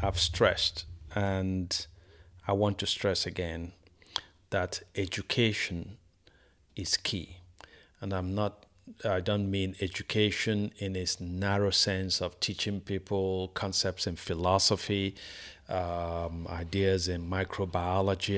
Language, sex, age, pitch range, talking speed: English, male, 50-69, 90-105 Hz, 110 wpm